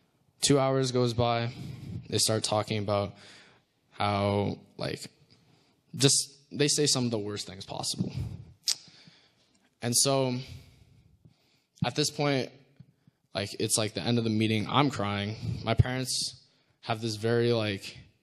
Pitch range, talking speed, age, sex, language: 105-130 Hz, 130 wpm, 10-29, male, English